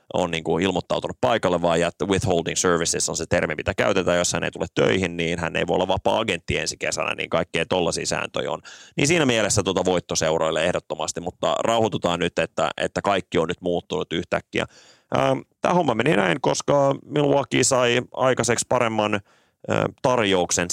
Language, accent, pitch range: Finnish, native, 85-100 Hz